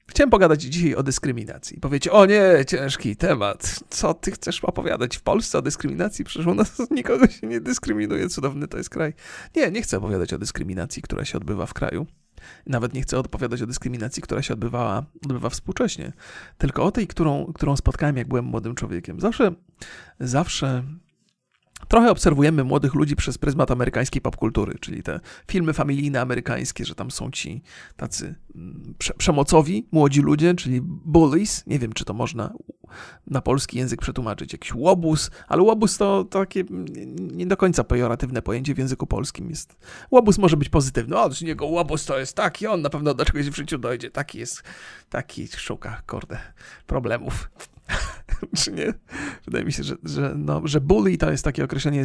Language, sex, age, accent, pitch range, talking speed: Polish, male, 40-59, native, 125-165 Hz, 175 wpm